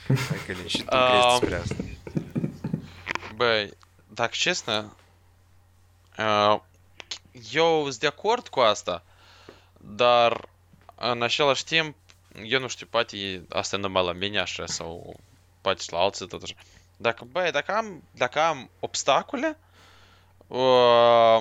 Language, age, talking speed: Romanian, 20-39, 75 wpm